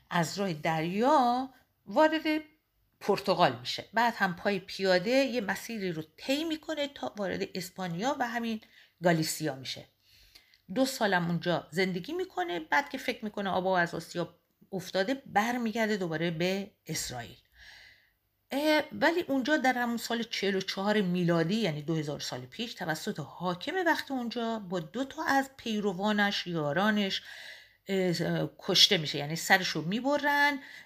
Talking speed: 130 wpm